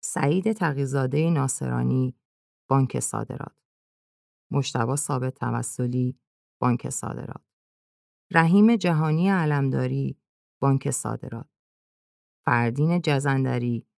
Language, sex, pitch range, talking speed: Persian, female, 110-145 Hz, 75 wpm